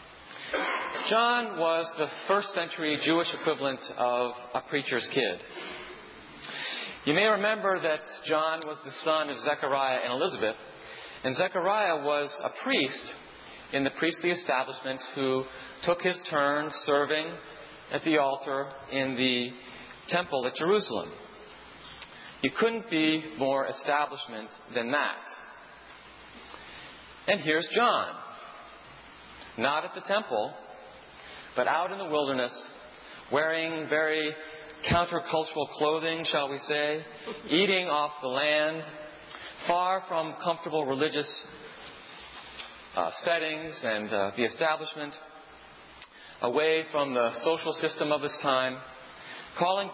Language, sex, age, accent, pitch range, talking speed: English, male, 40-59, American, 140-165 Hz, 110 wpm